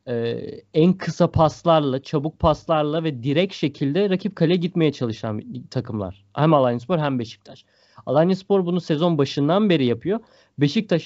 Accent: native